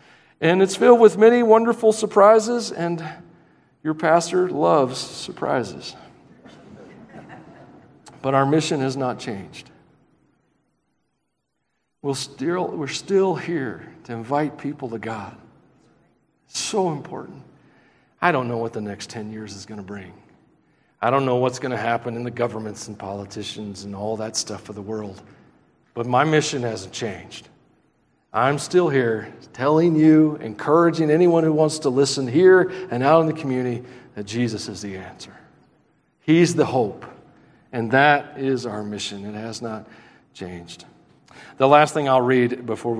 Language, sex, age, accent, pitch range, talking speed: English, male, 50-69, American, 110-160 Hz, 145 wpm